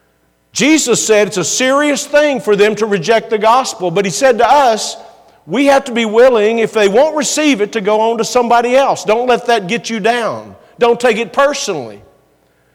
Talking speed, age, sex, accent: 200 wpm, 50-69, male, American